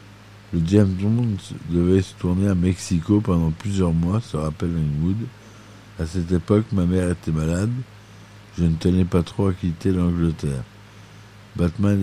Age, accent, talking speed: 60-79, French, 150 wpm